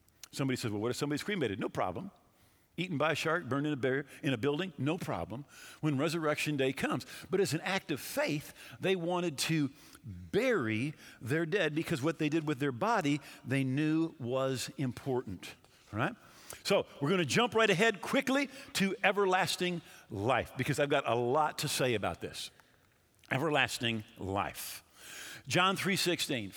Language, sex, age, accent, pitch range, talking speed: English, male, 50-69, American, 130-180 Hz, 165 wpm